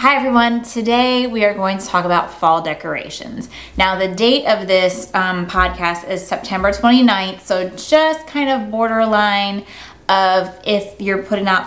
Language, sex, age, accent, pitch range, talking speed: English, female, 20-39, American, 185-220 Hz, 160 wpm